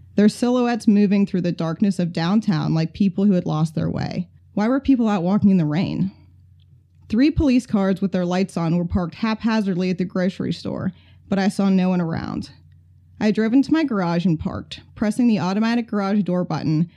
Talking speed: 200 wpm